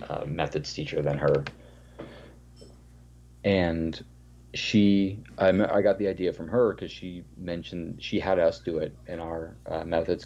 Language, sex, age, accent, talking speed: English, male, 40-59, American, 150 wpm